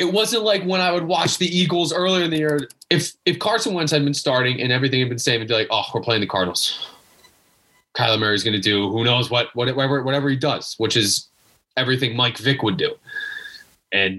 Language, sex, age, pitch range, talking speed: English, male, 20-39, 120-170 Hz, 230 wpm